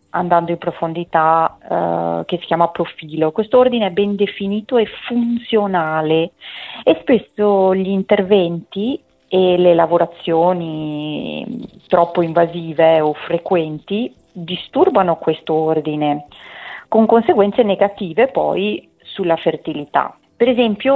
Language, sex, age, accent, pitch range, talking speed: Italian, female, 40-59, native, 170-215 Hz, 110 wpm